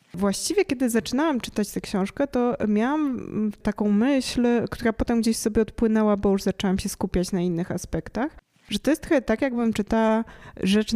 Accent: native